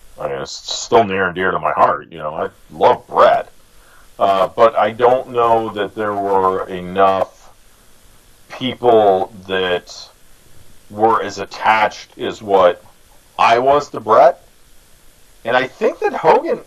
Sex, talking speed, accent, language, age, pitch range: male, 145 wpm, American, English, 40-59, 95-160 Hz